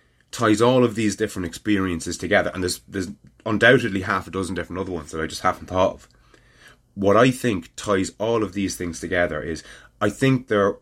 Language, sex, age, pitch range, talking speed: English, male, 30-49, 85-115 Hz, 200 wpm